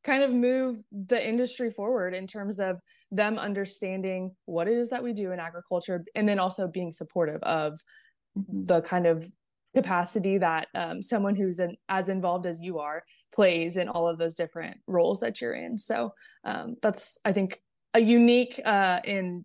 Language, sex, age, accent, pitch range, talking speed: English, female, 20-39, American, 185-235 Hz, 175 wpm